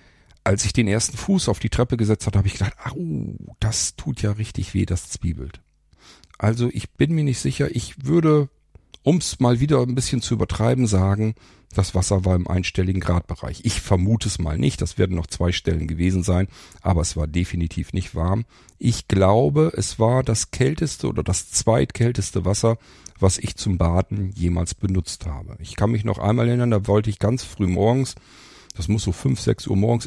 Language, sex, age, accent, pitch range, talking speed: German, male, 50-69, German, 95-115 Hz, 195 wpm